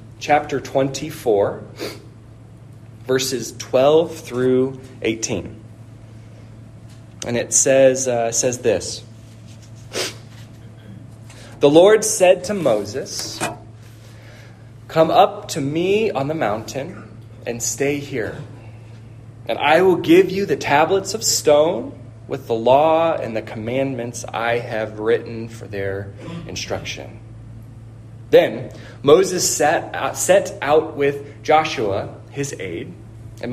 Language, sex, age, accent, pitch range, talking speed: English, male, 30-49, American, 115-135 Hz, 105 wpm